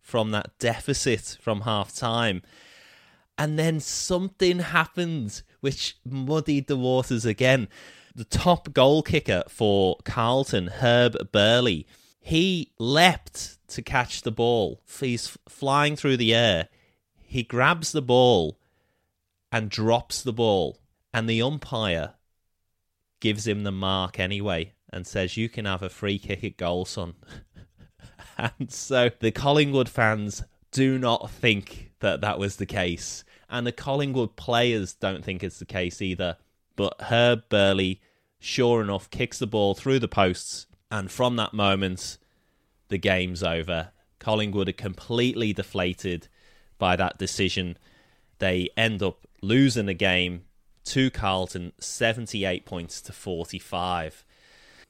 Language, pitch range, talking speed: English, 95-125 Hz, 130 wpm